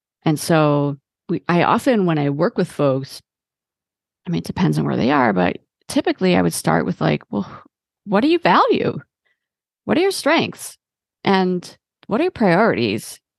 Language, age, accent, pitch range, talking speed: English, 30-49, American, 150-200 Hz, 170 wpm